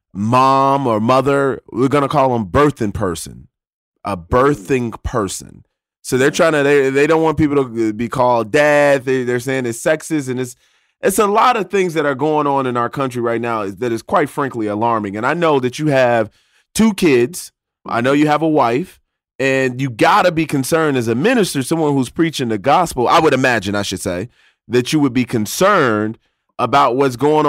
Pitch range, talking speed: 115-145 Hz, 205 wpm